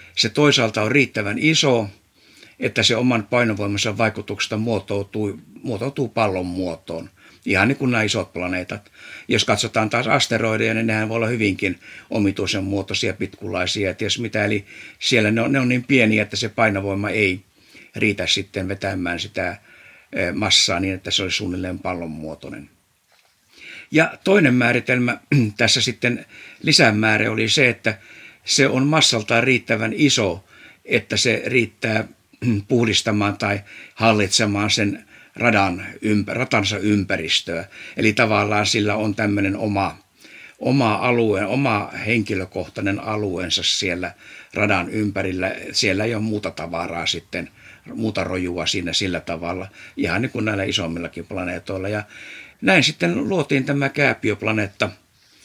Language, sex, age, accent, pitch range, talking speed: Finnish, male, 60-79, native, 95-115 Hz, 130 wpm